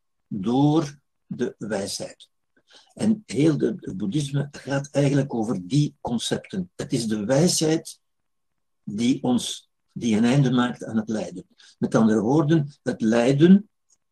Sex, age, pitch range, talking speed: male, 60-79, 120-165 Hz, 130 wpm